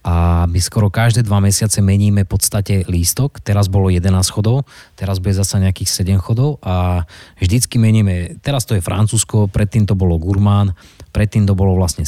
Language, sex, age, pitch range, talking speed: Slovak, male, 20-39, 90-105 Hz, 175 wpm